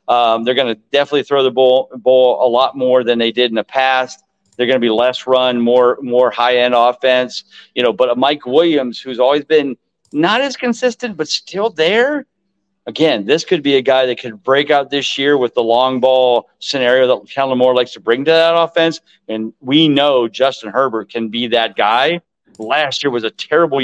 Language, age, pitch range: English, 40-59, 125-190 Hz